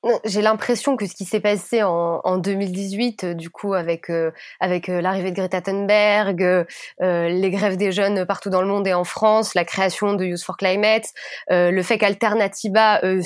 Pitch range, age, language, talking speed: 185-220 Hz, 20-39, French, 185 wpm